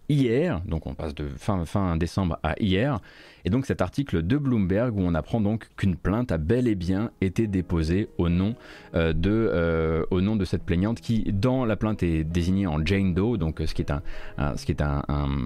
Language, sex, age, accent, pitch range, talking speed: French, male, 30-49, French, 85-115 Hz, 225 wpm